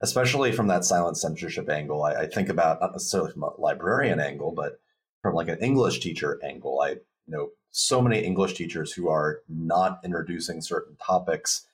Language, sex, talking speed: English, male, 180 wpm